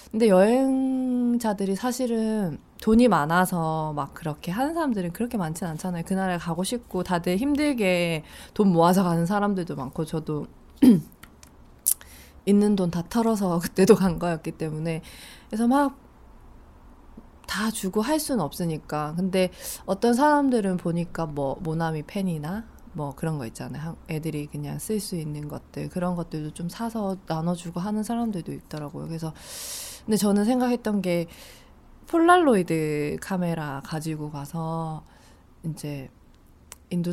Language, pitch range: Korean, 155-205 Hz